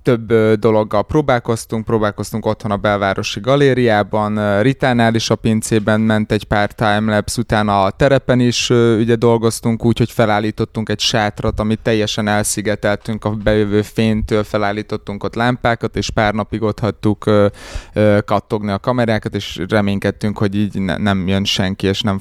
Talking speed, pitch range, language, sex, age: 145 wpm, 100-115 Hz, Hungarian, male, 20-39